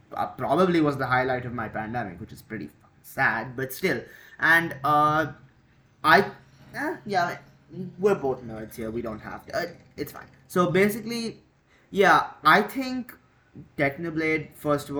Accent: Indian